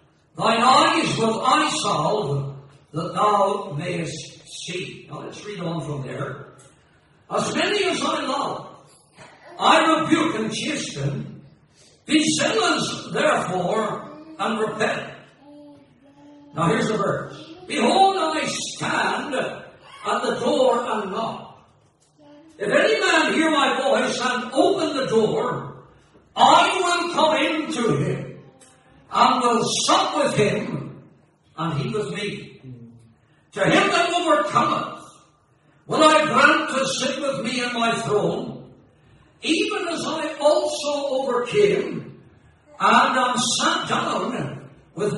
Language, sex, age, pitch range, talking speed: English, male, 60-79, 205-310 Hz, 120 wpm